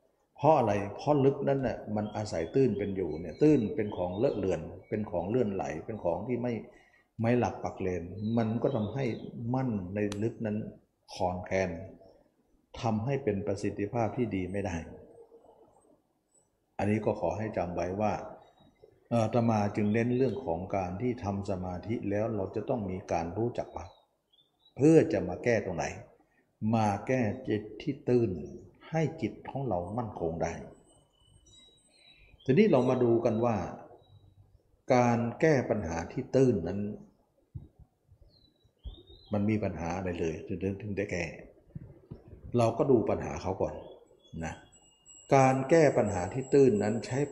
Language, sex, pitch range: Thai, male, 95-120 Hz